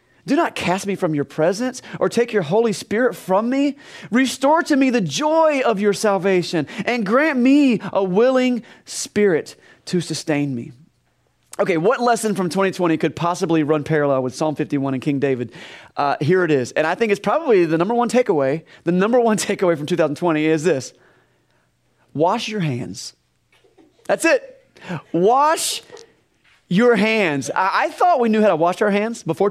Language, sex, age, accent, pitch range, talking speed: English, male, 30-49, American, 165-235 Hz, 175 wpm